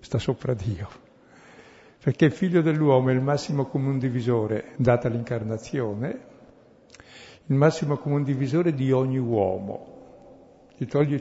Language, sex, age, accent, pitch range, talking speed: Italian, male, 60-79, native, 115-140 Hz, 125 wpm